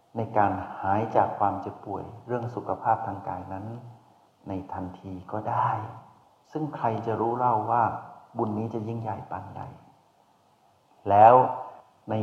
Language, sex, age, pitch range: Thai, male, 60-79, 100-120 Hz